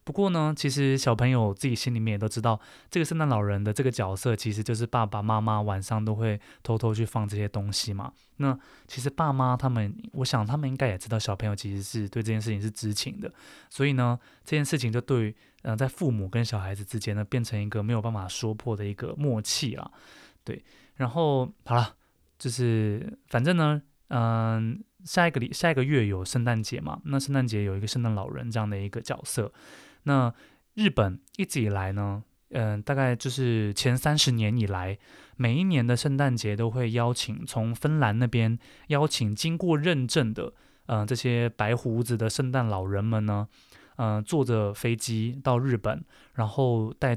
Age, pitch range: 20-39, 105-130 Hz